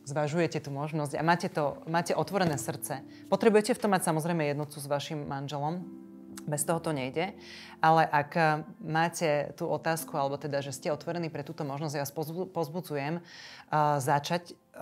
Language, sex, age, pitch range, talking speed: Slovak, female, 30-49, 150-175 Hz, 155 wpm